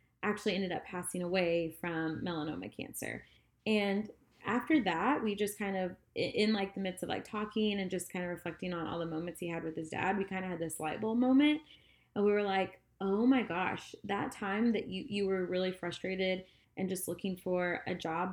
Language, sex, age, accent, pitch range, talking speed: English, female, 20-39, American, 170-210 Hz, 215 wpm